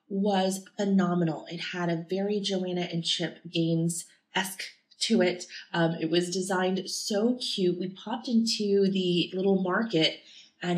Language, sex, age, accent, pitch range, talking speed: English, female, 30-49, American, 175-210 Hz, 140 wpm